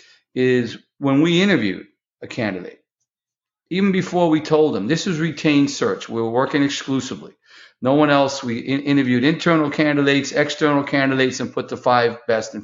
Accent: American